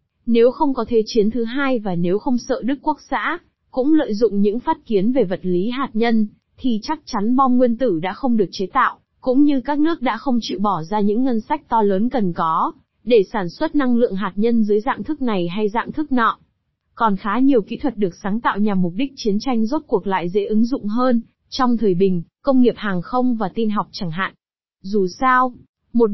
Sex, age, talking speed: female, 20-39, 235 wpm